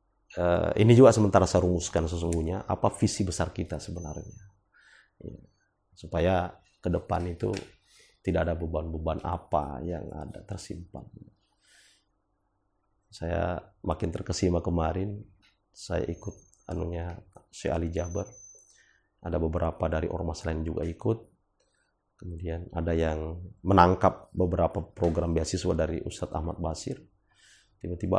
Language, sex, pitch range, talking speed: Malay, male, 85-105 Hz, 110 wpm